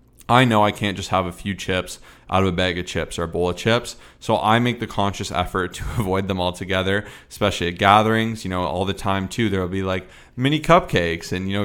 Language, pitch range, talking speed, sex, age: English, 95-110 Hz, 240 wpm, male, 20-39